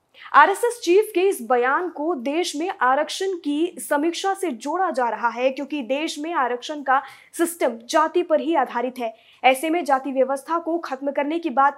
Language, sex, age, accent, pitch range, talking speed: Hindi, female, 20-39, native, 265-345 Hz, 180 wpm